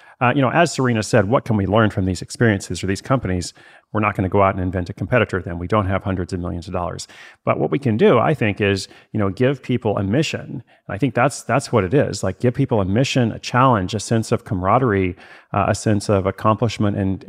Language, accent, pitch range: English, American, 95-125 Hz